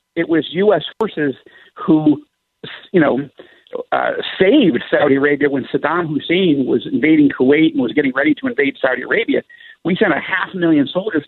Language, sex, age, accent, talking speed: English, male, 50-69, American, 165 wpm